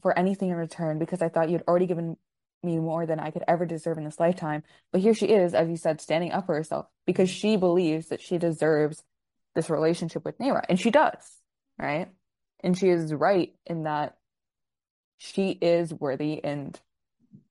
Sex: female